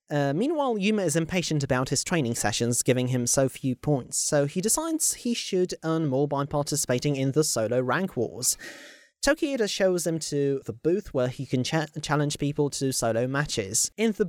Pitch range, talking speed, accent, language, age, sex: 130-180 Hz, 190 wpm, British, English, 30-49, male